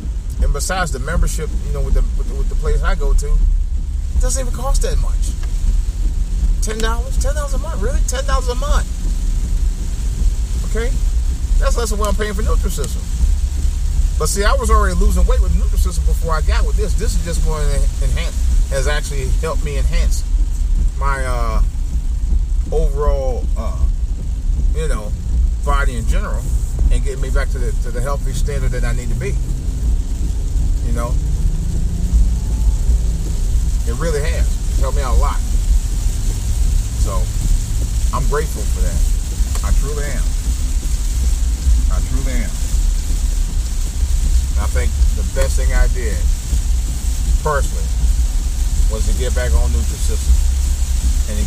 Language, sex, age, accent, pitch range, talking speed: English, male, 30-49, American, 65-75 Hz, 155 wpm